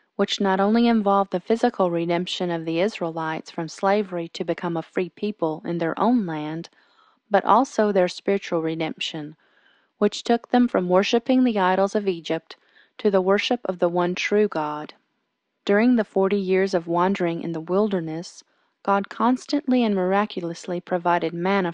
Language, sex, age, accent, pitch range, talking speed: English, female, 30-49, American, 170-210 Hz, 160 wpm